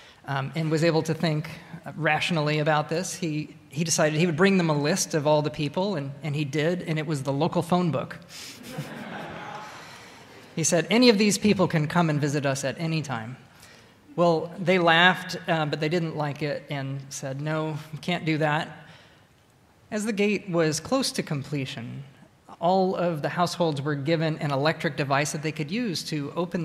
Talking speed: 190 wpm